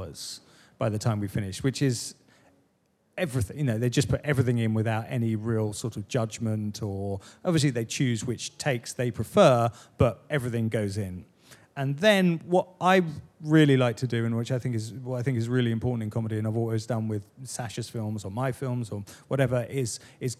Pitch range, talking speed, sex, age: 115-145 Hz, 200 wpm, male, 30-49